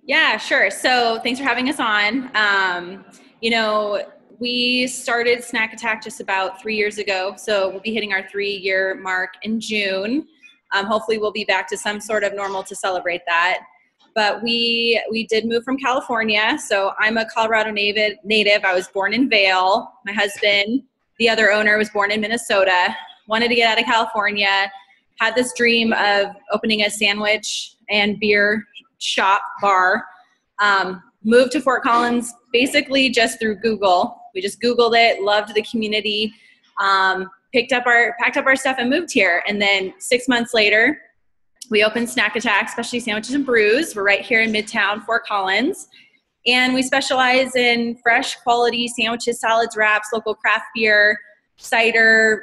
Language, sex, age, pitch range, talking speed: English, female, 20-39, 205-235 Hz, 165 wpm